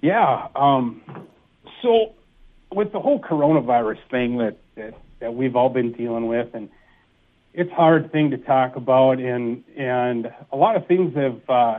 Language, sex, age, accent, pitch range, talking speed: English, male, 40-59, American, 120-140 Hz, 160 wpm